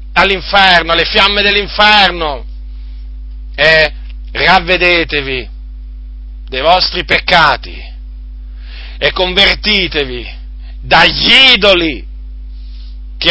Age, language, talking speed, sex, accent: 40-59, Italian, 65 wpm, male, native